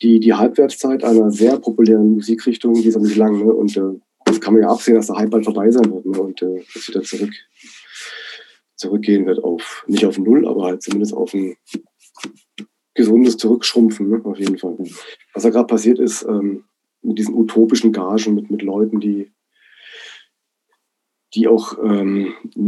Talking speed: 170 wpm